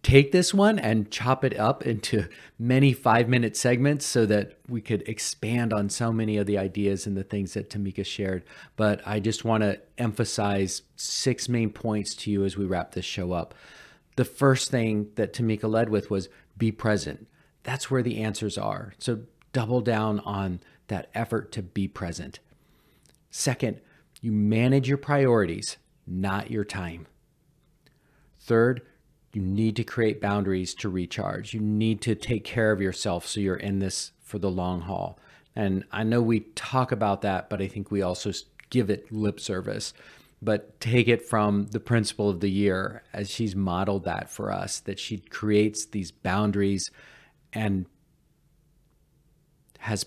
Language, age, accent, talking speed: English, 40-59, American, 165 wpm